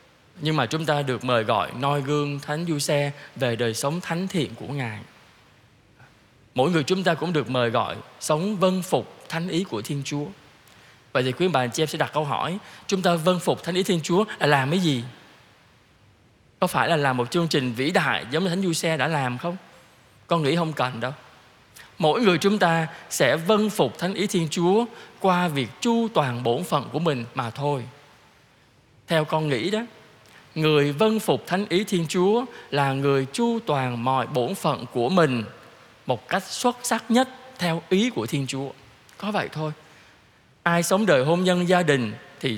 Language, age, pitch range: Vietnamese, 20-39, 130-185 Hz